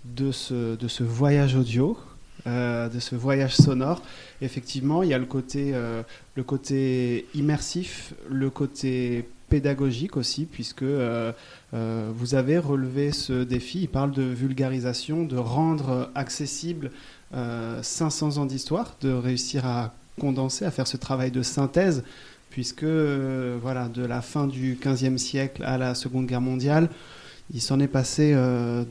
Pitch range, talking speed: 125-145 Hz, 145 wpm